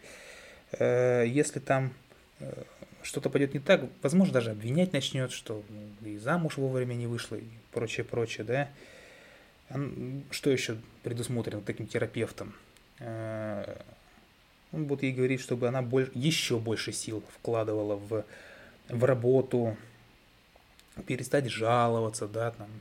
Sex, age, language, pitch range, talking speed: male, 20-39, Russian, 110-135 Hz, 105 wpm